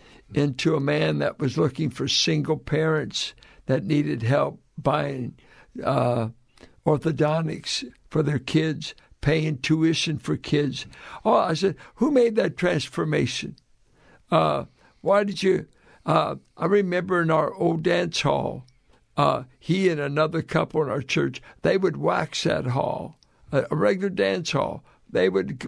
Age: 60-79